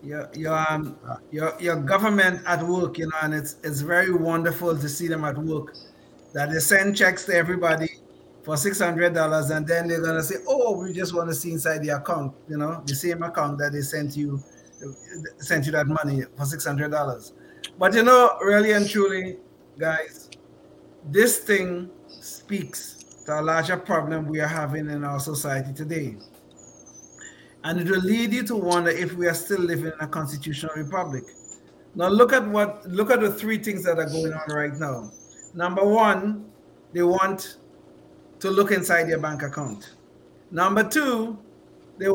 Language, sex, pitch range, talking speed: English, male, 150-200 Hz, 175 wpm